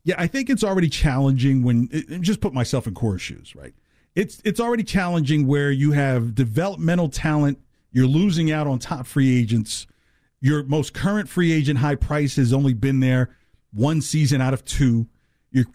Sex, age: male, 50-69